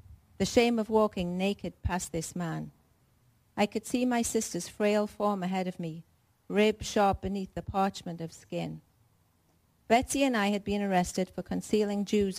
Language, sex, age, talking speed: English, female, 50-69, 165 wpm